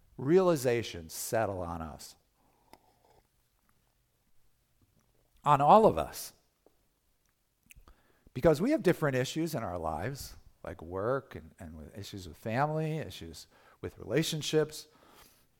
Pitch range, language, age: 110-160 Hz, English, 50-69